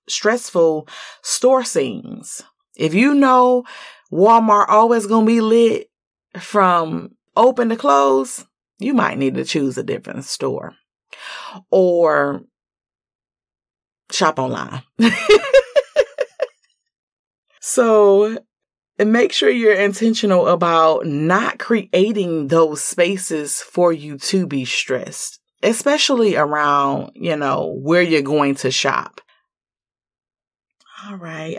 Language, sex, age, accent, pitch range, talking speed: English, female, 30-49, American, 160-235 Hz, 105 wpm